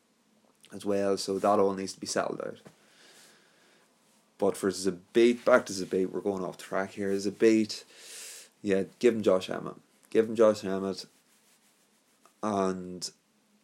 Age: 20-39